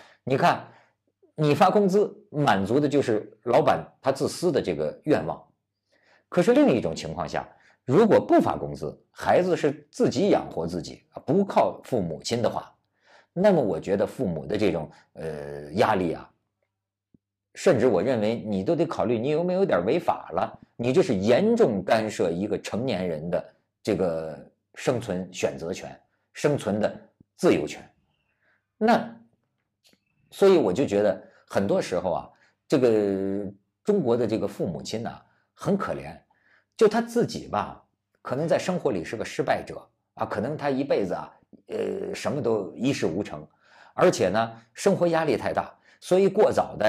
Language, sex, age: Chinese, male, 50-69